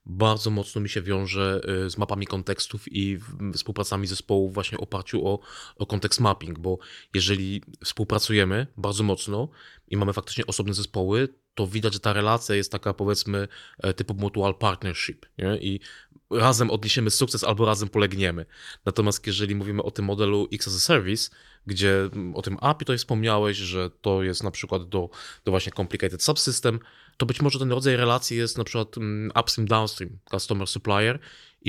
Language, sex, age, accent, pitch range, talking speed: Polish, male, 20-39, native, 95-115 Hz, 160 wpm